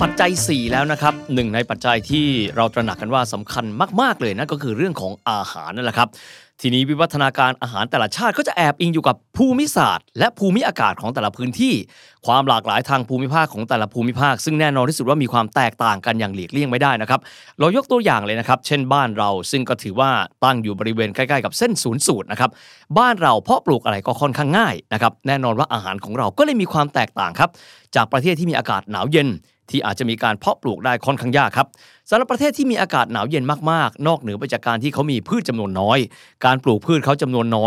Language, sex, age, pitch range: Thai, male, 20-39, 115-150 Hz